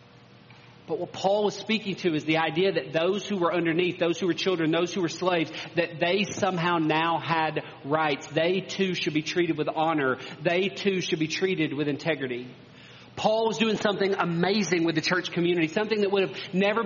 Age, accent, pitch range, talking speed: 40-59, American, 165-205 Hz, 200 wpm